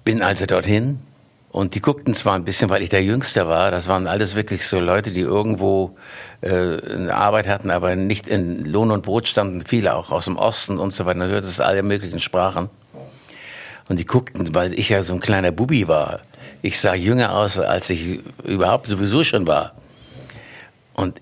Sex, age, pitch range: male, 60-79, 90-110 Hz